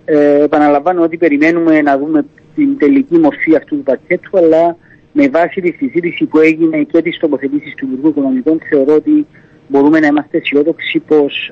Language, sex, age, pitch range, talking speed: Greek, male, 50-69, 145-185 Hz, 165 wpm